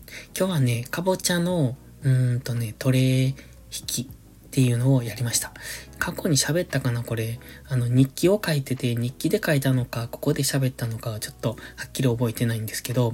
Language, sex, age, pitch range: Japanese, male, 20-39, 120-150 Hz